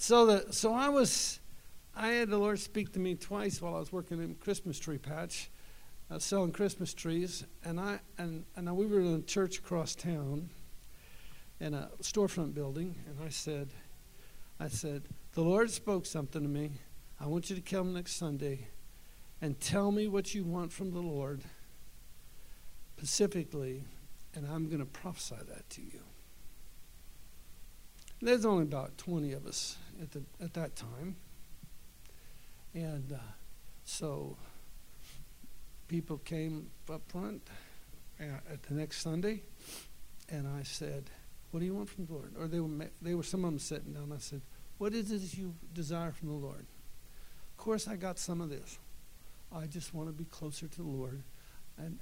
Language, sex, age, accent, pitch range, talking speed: English, male, 60-79, American, 140-180 Hz, 170 wpm